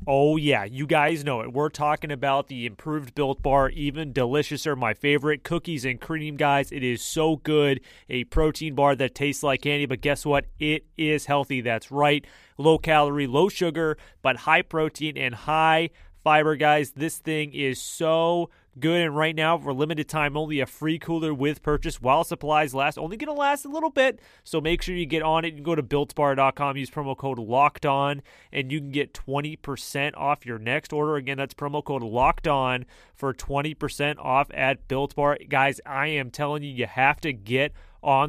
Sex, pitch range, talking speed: male, 140-160 Hz, 195 wpm